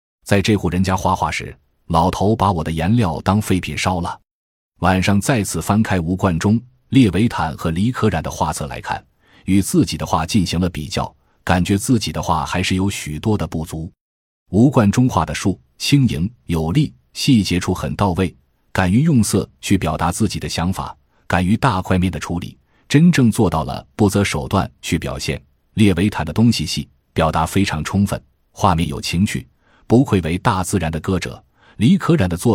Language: Chinese